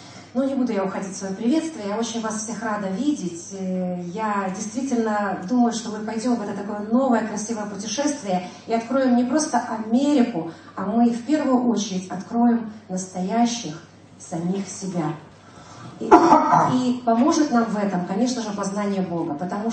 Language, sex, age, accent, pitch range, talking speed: Russian, female, 30-49, native, 200-250 Hz, 155 wpm